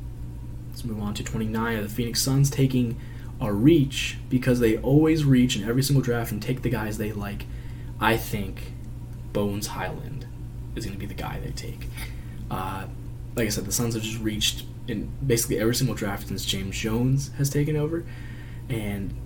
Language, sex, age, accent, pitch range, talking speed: English, male, 20-39, American, 115-130 Hz, 180 wpm